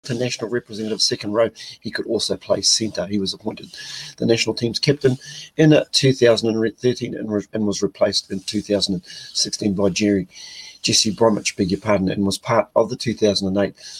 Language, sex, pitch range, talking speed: English, male, 100-130 Hz, 165 wpm